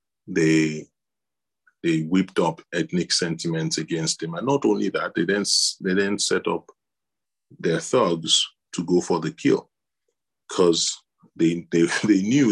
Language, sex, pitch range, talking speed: English, male, 80-105 Hz, 145 wpm